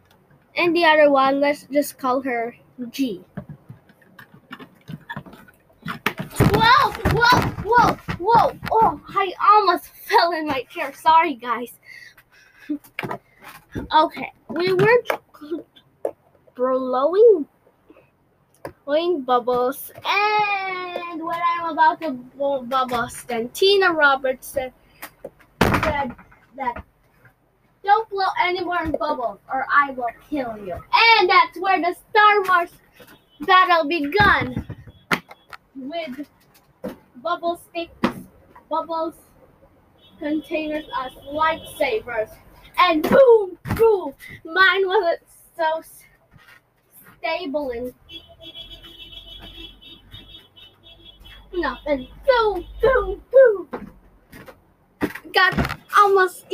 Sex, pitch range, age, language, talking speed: female, 280-380 Hz, 20-39, English, 85 wpm